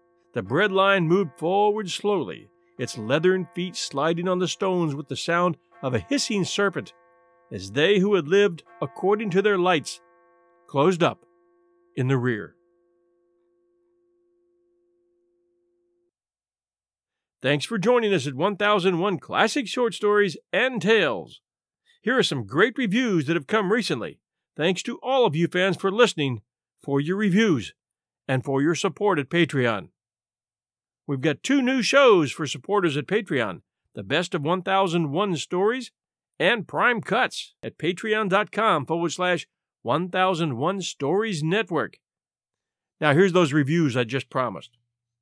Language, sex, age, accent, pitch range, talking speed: English, male, 50-69, American, 150-215 Hz, 135 wpm